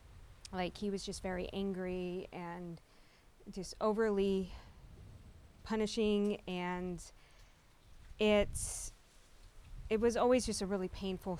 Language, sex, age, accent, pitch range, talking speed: English, female, 20-39, American, 170-205 Hz, 100 wpm